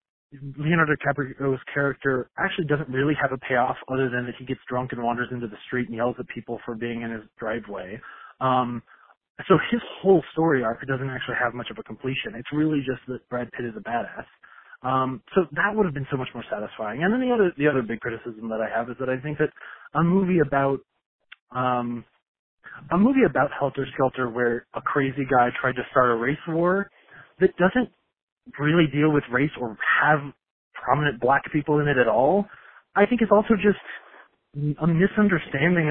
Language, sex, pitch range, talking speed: English, male, 125-155 Hz, 195 wpm